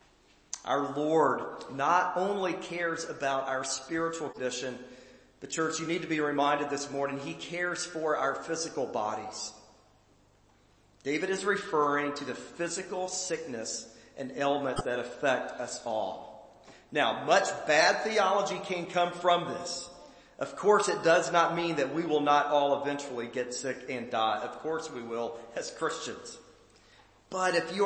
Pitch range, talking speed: 135-175 Hz, 150 wpm